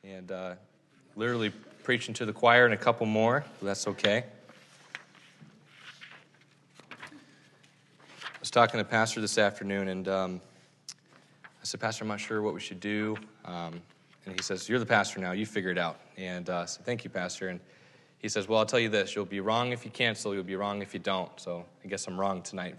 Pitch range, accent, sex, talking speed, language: 100-115 Hz, American, male, 210 wpm, English